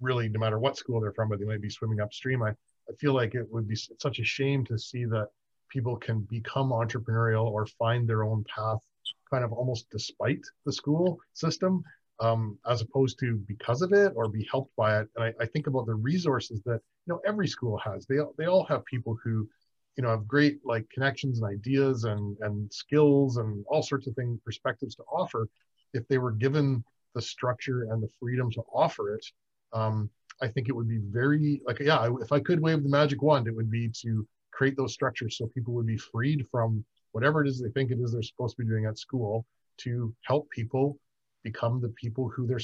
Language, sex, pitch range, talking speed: English, male, 110-135 Hz, 220 wpm